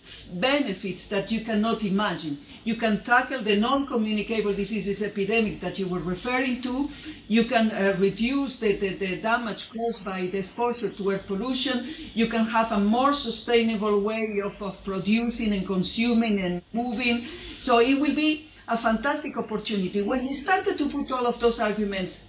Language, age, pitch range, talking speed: English, 50-69, 205-260 Hz, 165 wpm